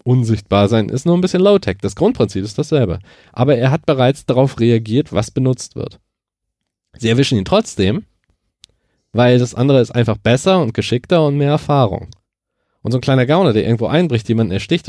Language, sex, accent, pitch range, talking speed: German, male, German, 110-145 Hz, 180 wpm